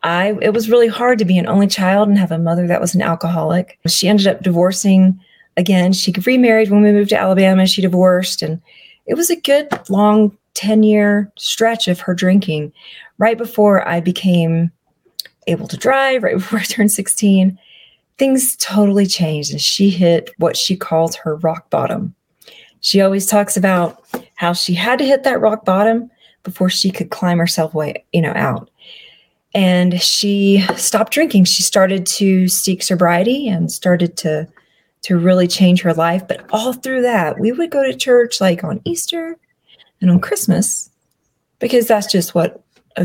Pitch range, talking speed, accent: 180-220 Hz, 175 wpm, American